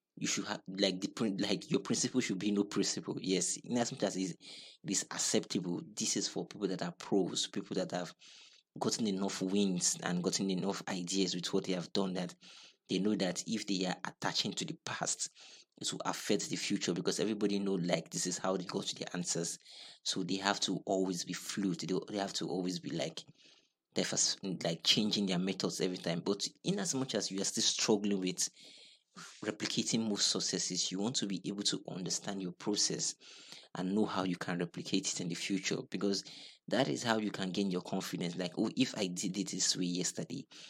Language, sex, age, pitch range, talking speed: English, male, 30-49, 90-100 Hz, 210 wpm